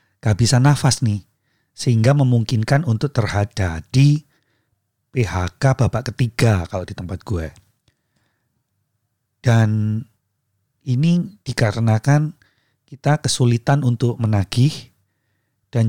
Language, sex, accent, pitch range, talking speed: Indonesian, male, native, 105-130 Hz, 90 wpm